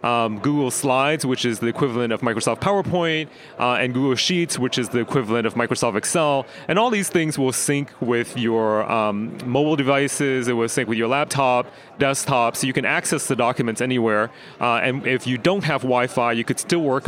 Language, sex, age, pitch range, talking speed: English, male, 30-49, 115-145 Hz, 200 wpm